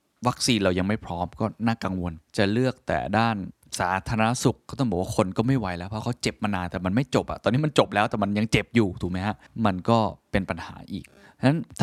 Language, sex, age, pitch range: Thai, male, 20-39, 90-115 Hz